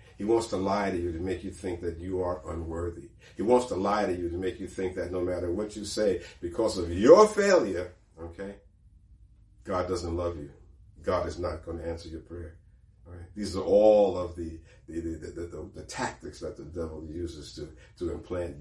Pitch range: 85-100 Hz